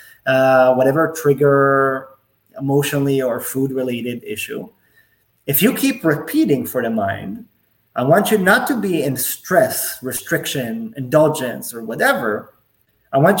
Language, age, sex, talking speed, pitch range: English, 30-49, male, 125 wpm, 135-215 Hz